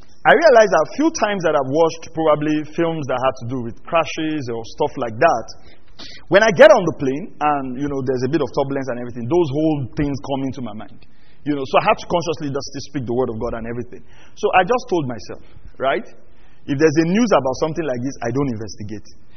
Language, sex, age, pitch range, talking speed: English, male, 40-59, 145-205 Hz, 235 wpm